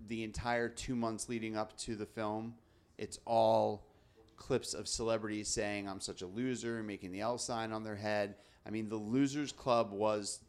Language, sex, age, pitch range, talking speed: English, male, 30-49, 100-135 Hz, 190 wpm